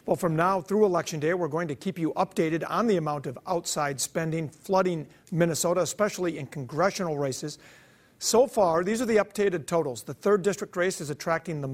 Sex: male